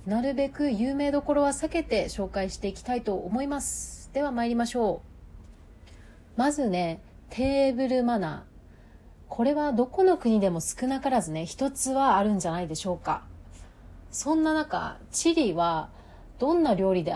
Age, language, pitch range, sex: 30-49, Japanese, 170-265 Hz, female